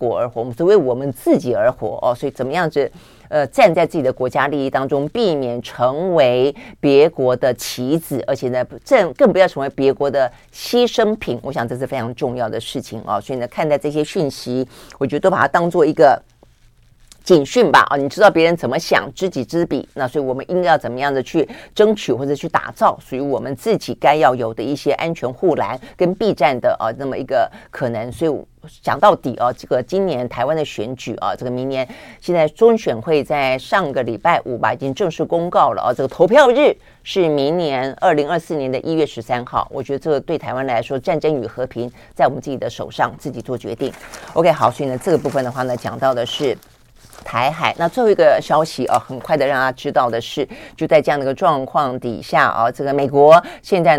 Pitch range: 130-175 Hz